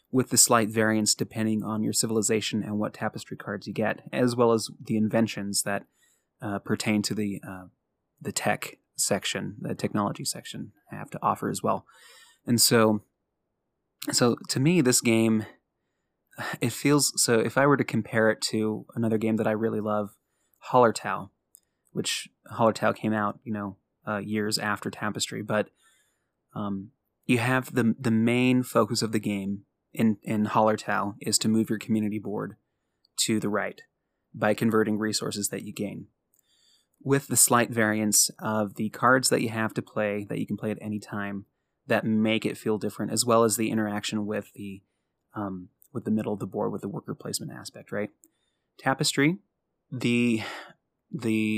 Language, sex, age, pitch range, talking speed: English, male, 20-39, 105-120 Hz, 170 wpm